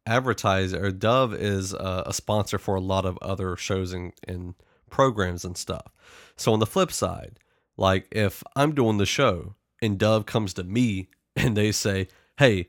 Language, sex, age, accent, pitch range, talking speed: English, male, 30-49, American, 95-115 Hz, 175 wpm